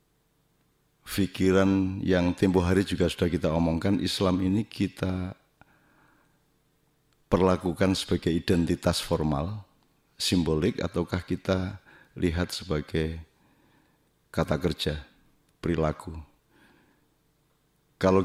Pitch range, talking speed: 85-100 Hz, 80 wpm